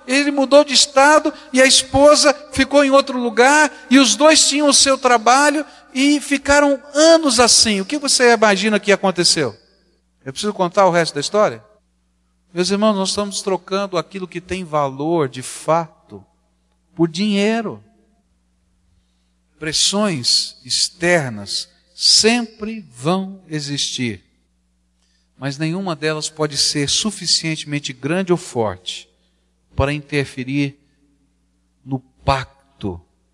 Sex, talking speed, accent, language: male, 120 wpm, Brazilian, Portuguese